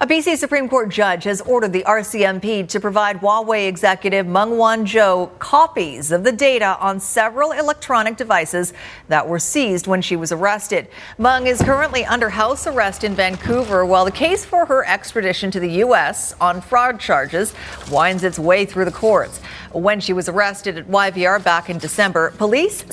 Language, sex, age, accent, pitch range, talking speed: English, female, 50-69, American, 185-240 Hz, 175 wpm